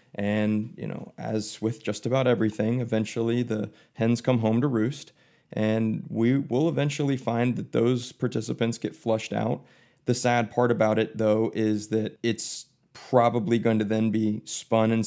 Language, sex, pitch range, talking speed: English, male, 105-120 Hz, 165 wpm